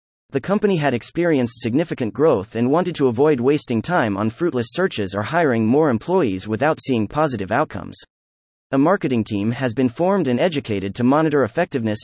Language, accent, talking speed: English, American, 170 wpm